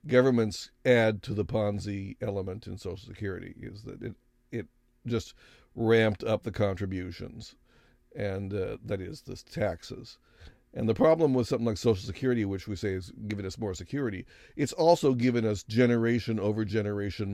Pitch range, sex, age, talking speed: 95-115 Hz, male, 50-69, 165 wpm